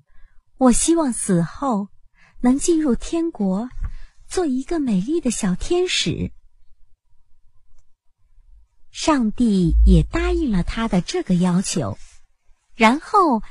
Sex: male